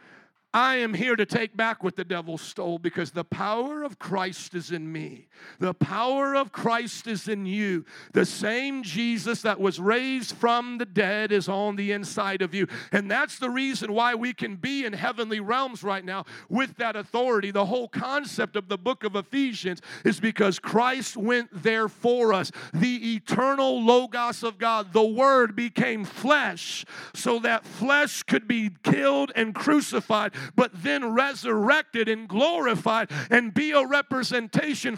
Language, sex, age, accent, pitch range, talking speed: English, male, 50-69, American, 205-245 Hz, 165 wpm